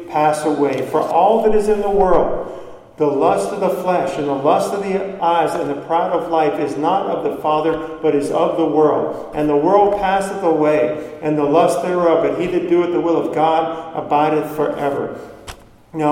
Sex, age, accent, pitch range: male, 50-69, American, 150-175 Hz